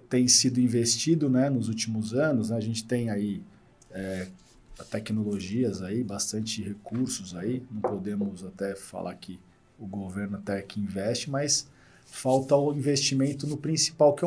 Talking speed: 145 wpm